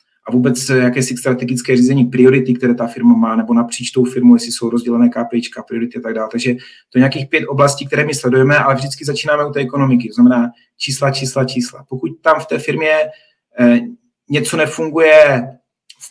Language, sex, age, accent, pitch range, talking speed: Czech, male, 40-59, native, 125-150 Hz, 185 wpm